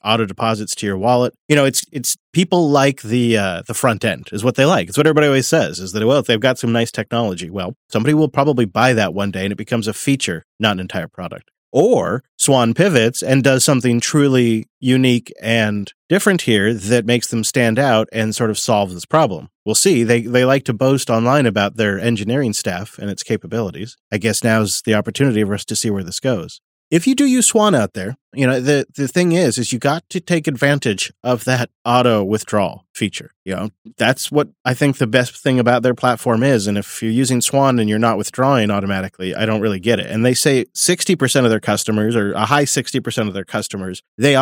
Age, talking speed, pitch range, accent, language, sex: 30-49, 225 wpm, 110-140 Hz, American, English, male